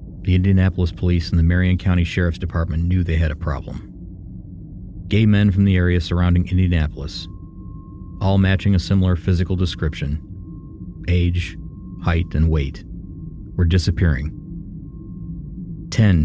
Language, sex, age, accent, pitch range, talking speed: English, male, 40-59, American, 85-95 Hz, 125 wpm